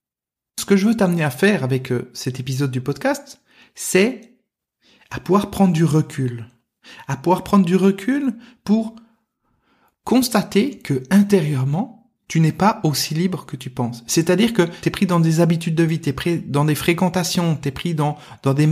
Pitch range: 150-200 Hz